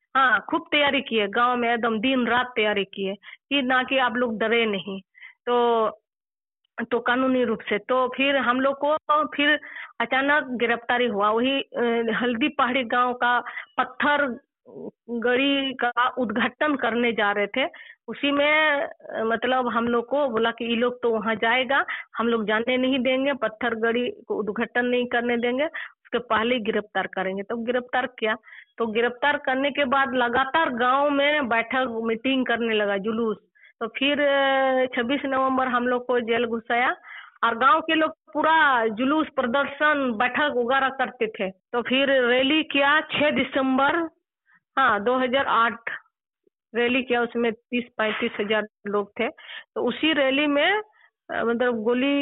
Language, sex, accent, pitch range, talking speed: Telugu, female, native, 230-280 Hz, 45 wpm